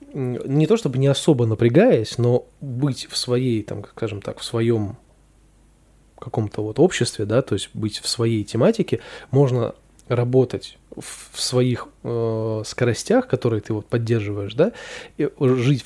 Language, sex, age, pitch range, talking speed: Russian, male, 20-39, 115-145 Hz, 145 wpm